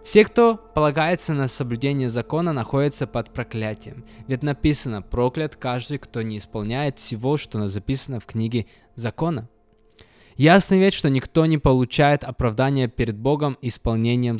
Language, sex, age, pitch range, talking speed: Russian, male, 20-39, 120-155 Hz, 135 wpm